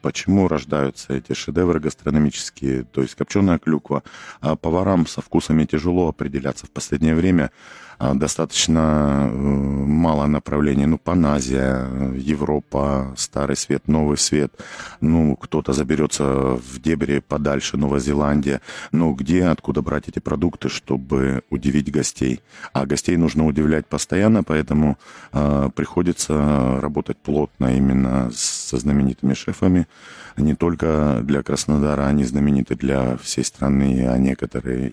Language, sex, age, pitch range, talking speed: Russian, male, 40-59, 65-75 Hz, 125 wpm